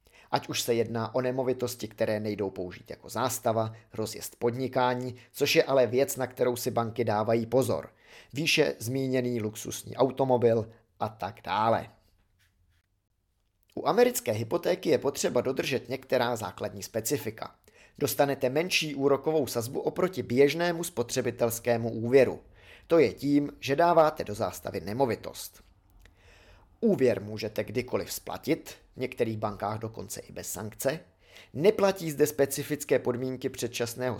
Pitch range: 105-135 Hz